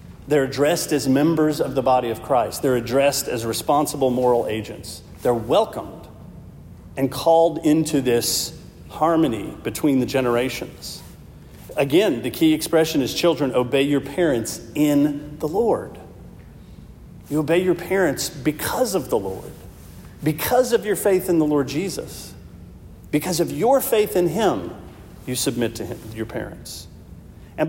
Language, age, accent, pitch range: English, 40-59, American, 125-165 Hz